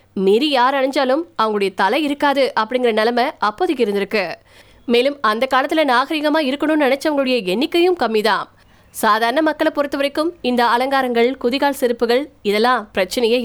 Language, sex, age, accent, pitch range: Tamil, female, 20-39, native, 230-295 Hz